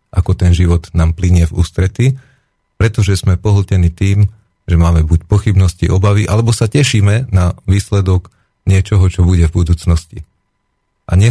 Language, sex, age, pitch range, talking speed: Slovak, male, 40-59, 85-105 Hz, 150 wpm